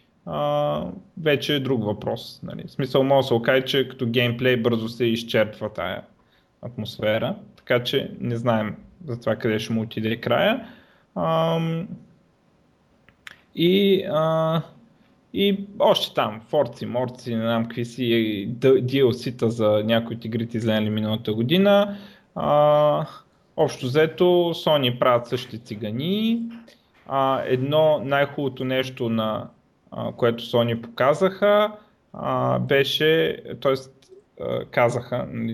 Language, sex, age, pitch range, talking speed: Bulgarian, male, 20-39, 115-150 Hz, 115 wpm